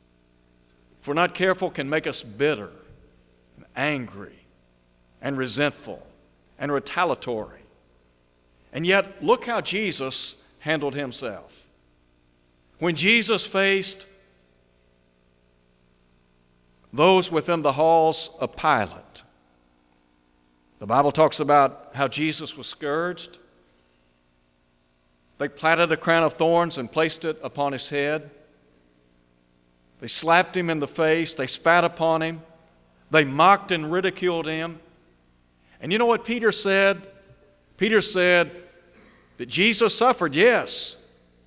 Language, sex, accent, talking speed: English, male, American, 110 wpm